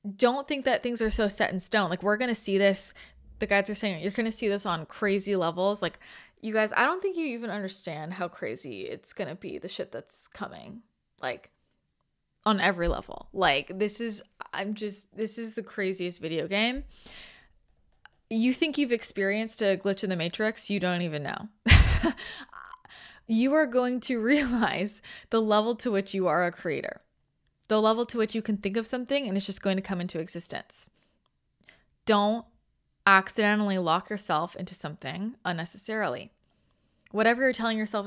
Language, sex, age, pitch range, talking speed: English, female, 20-39, 185-230 Hz, 180 wpm